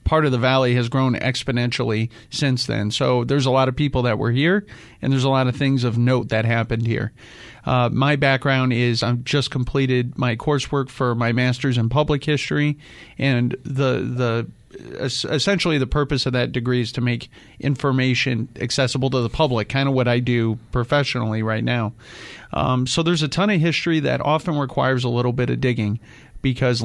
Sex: male